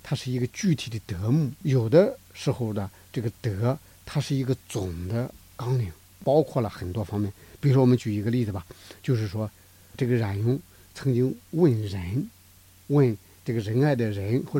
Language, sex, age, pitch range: Chinese, male, 50-69, 100-140 Hz